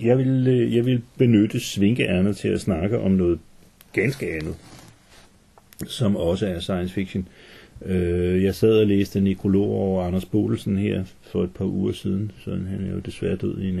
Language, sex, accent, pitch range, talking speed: Danish, male, native, 90-100 Hz, 180 wpm